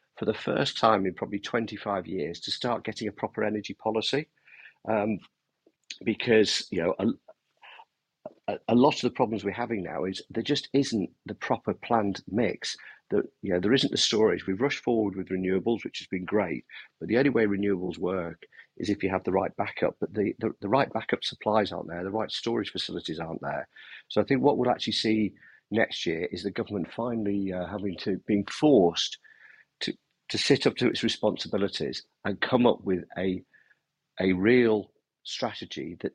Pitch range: 95-115 Hz